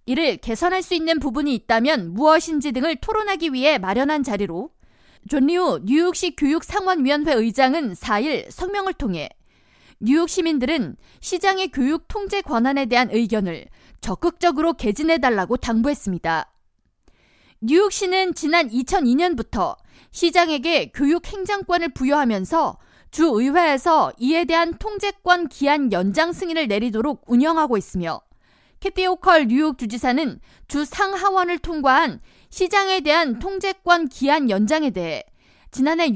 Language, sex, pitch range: Korean, female, 255-350 Hz